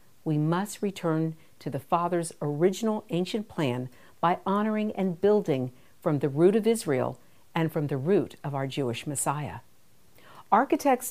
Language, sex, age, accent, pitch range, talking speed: English, female, 50-69, American, 145-210 Hz, 145 wpm